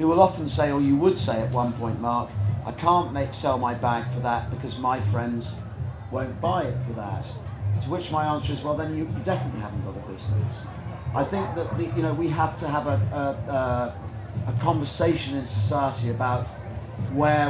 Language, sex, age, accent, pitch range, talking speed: English, male, 40-59, British, 115-140 Hz, 215 wpm